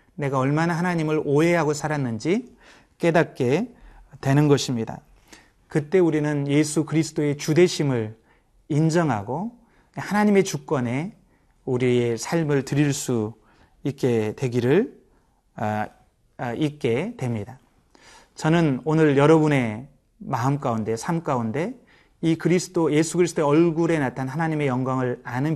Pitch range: 130-165 Hz